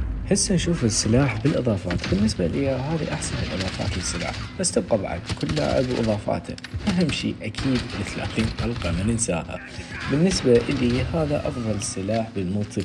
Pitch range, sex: 95-125 Hz, male